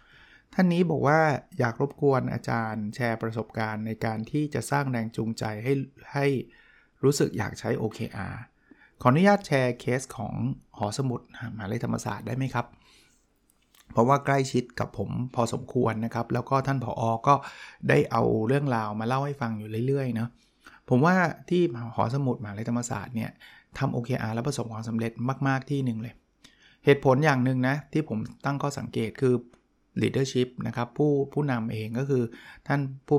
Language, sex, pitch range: Thai, male, 115-140 Hz